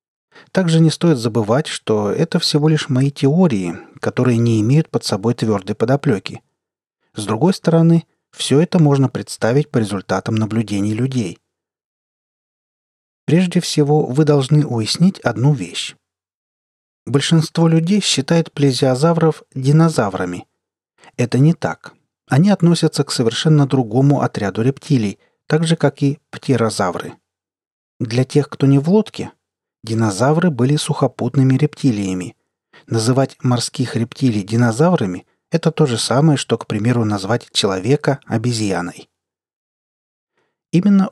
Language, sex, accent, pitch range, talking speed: Russian, male, native, 115-155 Hz, 115 wpm